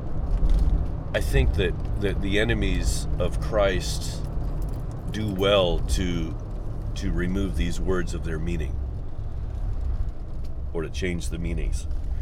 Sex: male